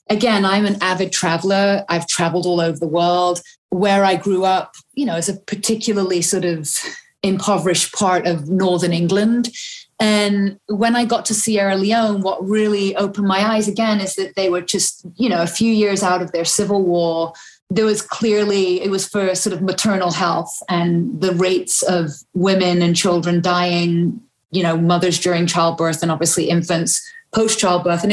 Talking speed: 175 wpm